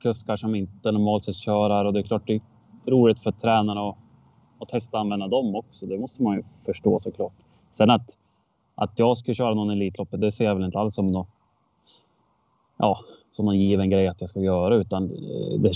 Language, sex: Swedish, male